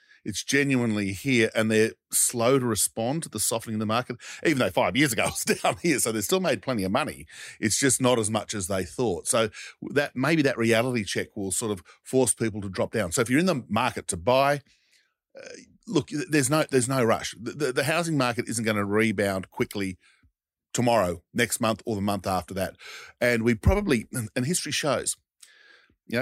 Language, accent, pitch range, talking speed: English, Australian, 110-140 Hz, 210 wpm